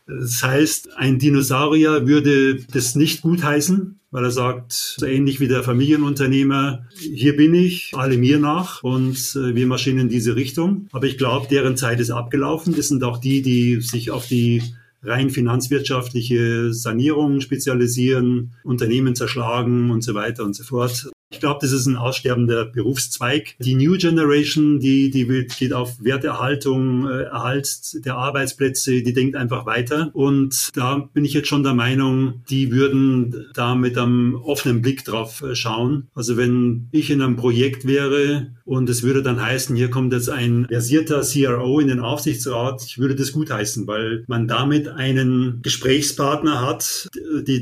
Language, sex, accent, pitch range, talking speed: German, male, German, 125-145 Hz, 160 wpm